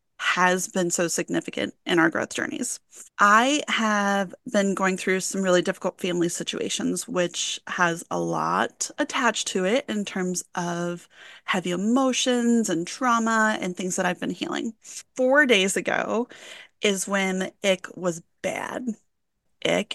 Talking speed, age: 140 wpm, 30-49